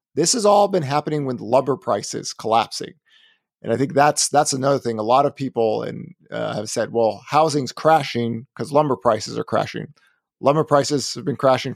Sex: male